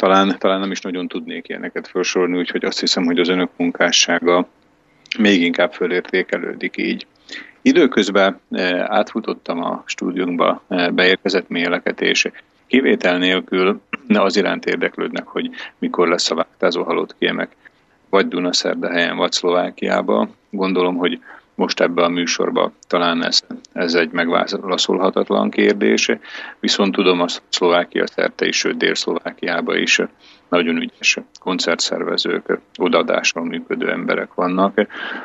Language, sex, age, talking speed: Slovak, male, 40-59, 120 wpm